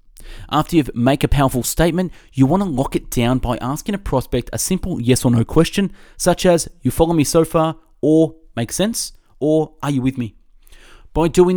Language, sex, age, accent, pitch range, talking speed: English, male, 30-49, Australian, 120-165 Hz, 200 wpm